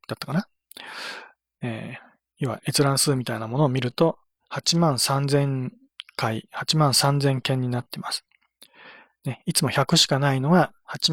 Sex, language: male, Japanese